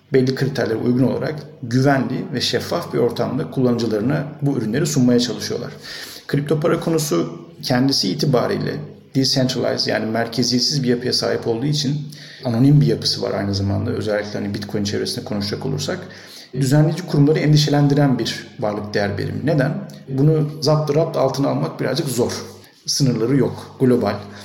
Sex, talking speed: male, 140 wpm